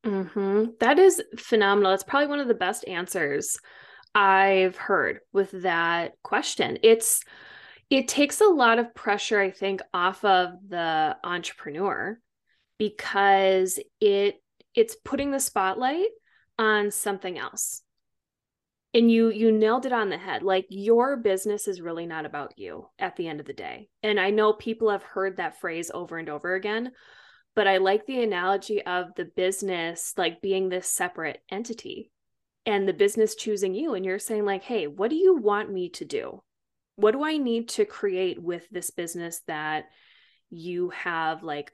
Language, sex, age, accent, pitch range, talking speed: English, female, 20-39, American, 190-235 Hz, 165 wpm